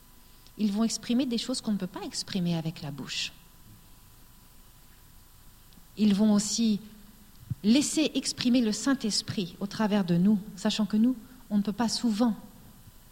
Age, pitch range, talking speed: 40-59, 180-240 Hz, 145 wpm